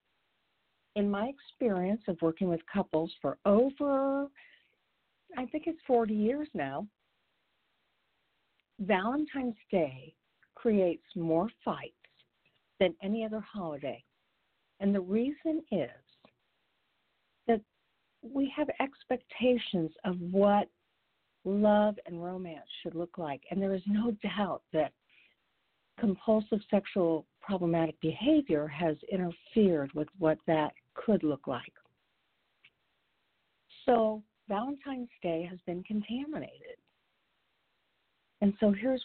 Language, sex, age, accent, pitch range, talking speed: English, female, 50-69, American, 170-230 Hz, 105 wpm